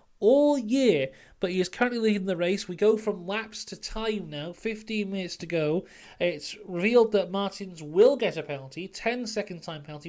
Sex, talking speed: male, 190 wpm